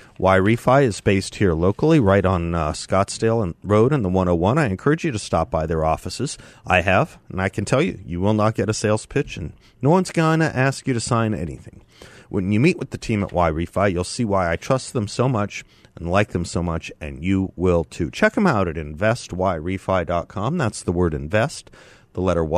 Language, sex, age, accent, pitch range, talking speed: English, male, 40-59, American, 90-115 Hz, 220 wpm